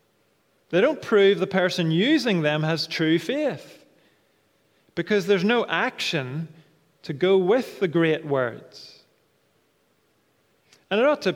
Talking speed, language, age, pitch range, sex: 125 wpm, English, 30-49, 155-200 Hz, male